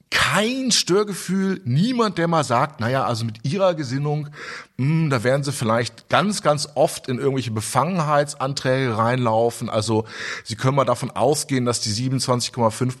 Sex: male